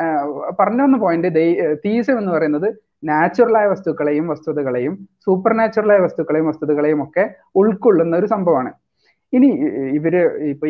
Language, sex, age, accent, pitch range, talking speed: Malayalam, male, 30-49, native, 145-200 Hz, 110 wpm